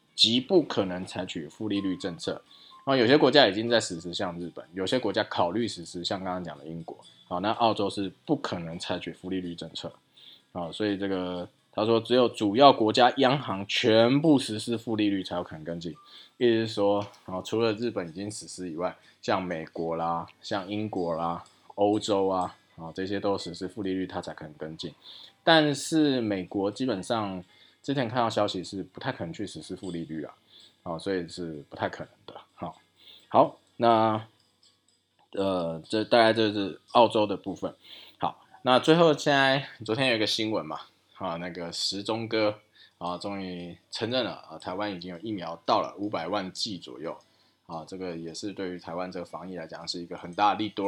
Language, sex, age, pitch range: Chinese, male, 20-39, 90-110 Hz